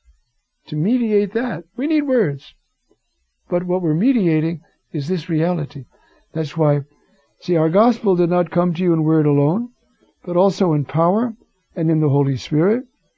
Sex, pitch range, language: male, 140-180 Hz, English